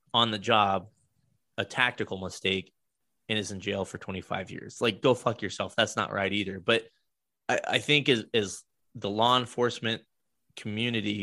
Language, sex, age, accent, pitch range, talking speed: English, male, 20-39, American, 105-140 Hz, 160 wpm